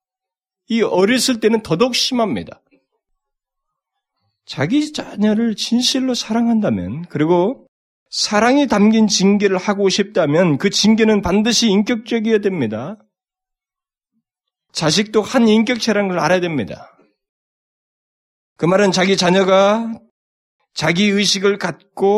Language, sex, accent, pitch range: Korean, male, native, 130-210 Hz